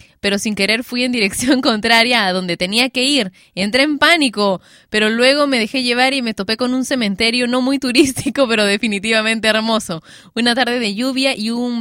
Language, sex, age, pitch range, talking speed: Spanish, female, 10-29, 200-255 Hz, 195 wpm